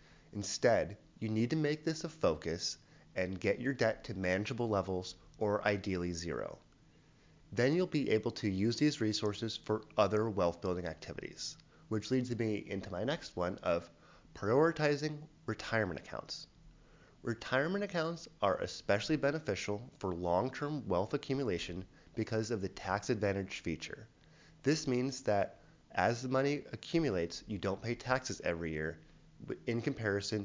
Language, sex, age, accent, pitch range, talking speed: English, male, 30-49, American, 95-135 Hz, 140 wpm